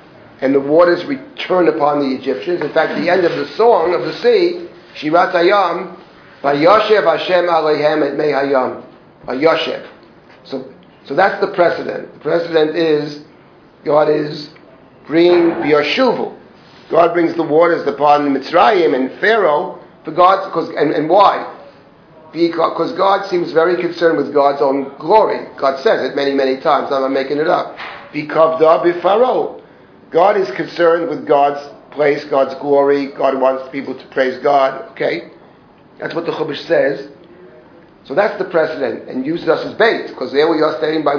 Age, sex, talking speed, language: 40-59, male, 160 wpm, English